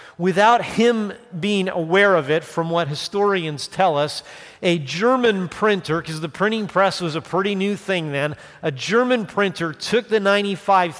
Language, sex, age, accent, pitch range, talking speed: English, male, 50-69, American, 165-205 Hz, 165 wpm